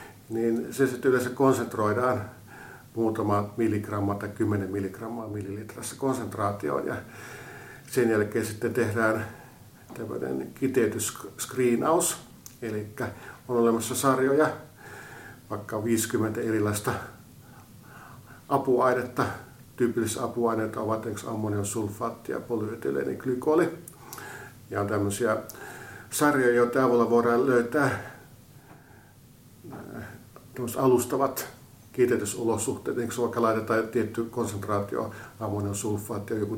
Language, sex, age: Finnish, male, 50-69